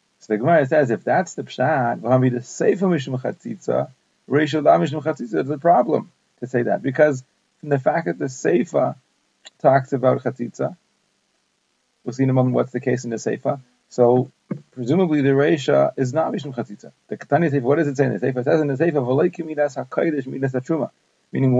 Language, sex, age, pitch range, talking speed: English, male, 40-59, 130-155 Hz, 165 wpm